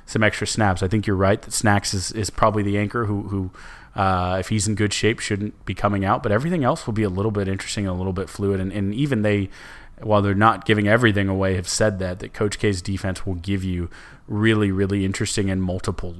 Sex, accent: male, American